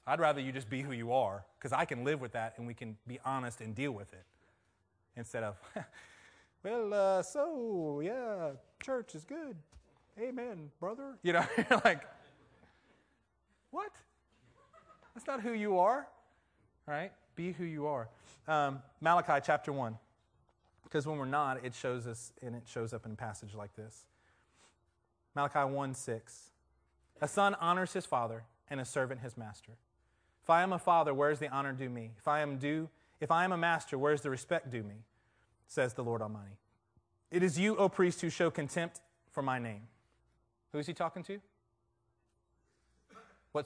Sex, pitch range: male, 110-165 Hz